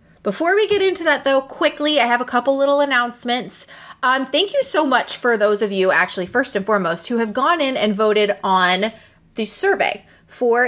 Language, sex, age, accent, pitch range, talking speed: English, female, 20-39, American, 190-250 Hz, 200 wpm